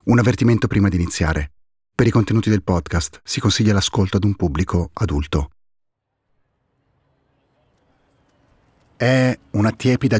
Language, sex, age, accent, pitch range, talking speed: Italian, male, 40-59, native, 85-110 Hz, 120 wpm